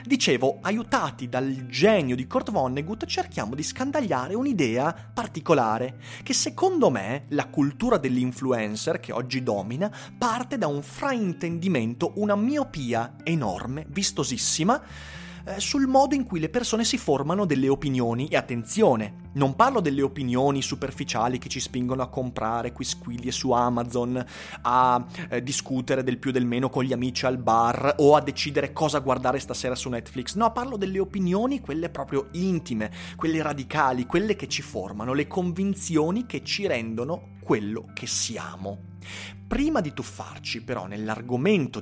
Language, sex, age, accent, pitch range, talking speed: Italian, male, 30-49, native, 120-190 Hz, 140 wpm